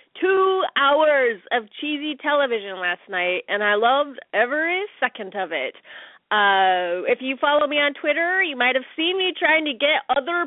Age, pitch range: 30-49, 210-325 Hz